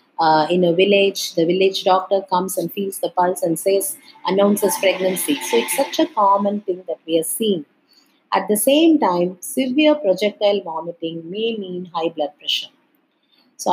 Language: English